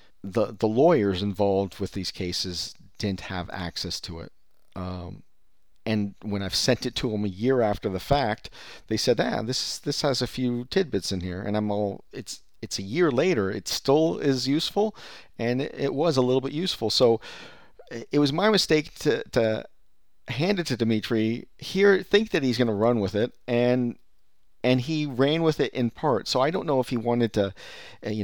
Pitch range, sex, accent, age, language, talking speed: 95-125 Hz, male, American, 40-59, English, 200 wpm